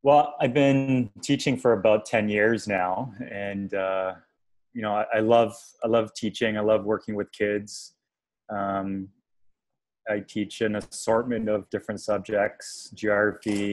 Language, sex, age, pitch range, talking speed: English, male, 20-39, 100-115 Hz, 145 wpm